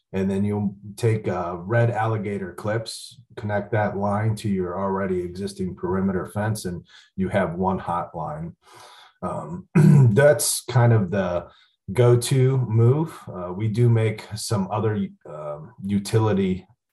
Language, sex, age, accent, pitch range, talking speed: English, male, 30-49, American, 100-115 Hz, 130 wpm